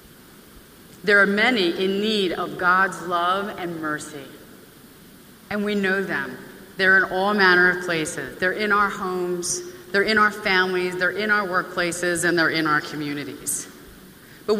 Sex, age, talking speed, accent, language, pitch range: female, 30-49, 155 wpm, American, English, 175-210 Hz